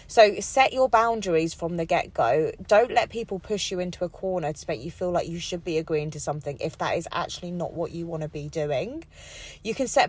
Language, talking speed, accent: English, 230 wpm, British